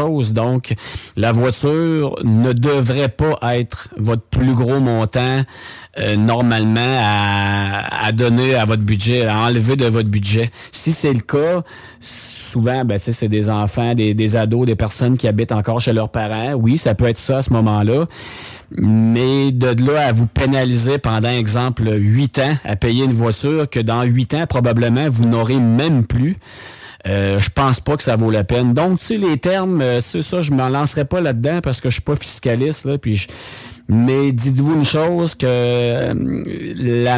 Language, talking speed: French, 180 wpm